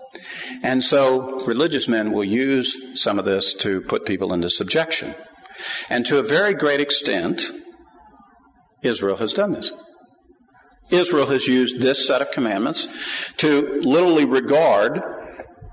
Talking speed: 130 wpm